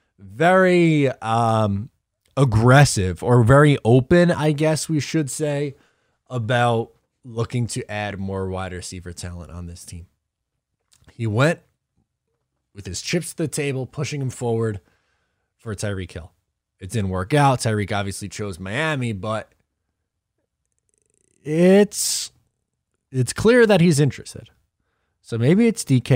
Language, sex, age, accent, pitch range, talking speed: English, male, 20-39, American, 100-145 Hz, 125 wpm